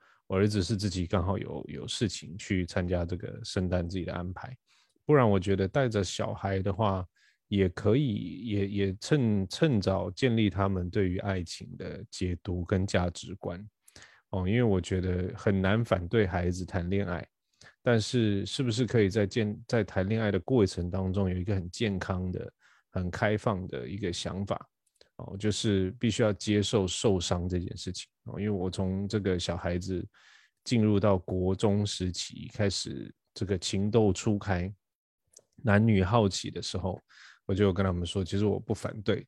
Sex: male